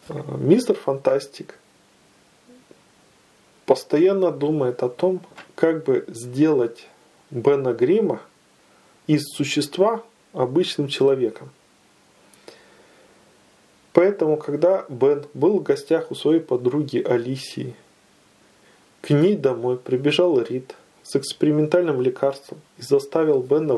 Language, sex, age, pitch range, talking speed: Russian, male, 20-39, 135-185 Hz, 90 wpm